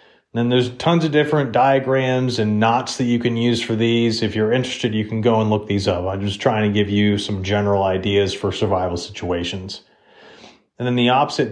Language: English